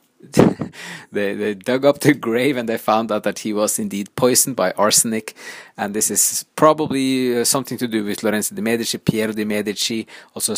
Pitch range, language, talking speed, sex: 110-135 Hz, English, 185 wpm, male